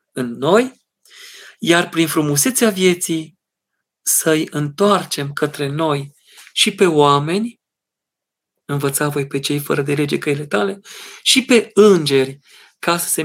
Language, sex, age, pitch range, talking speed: Romanian, male, 40-59, 145-195 Hz, 125 wpm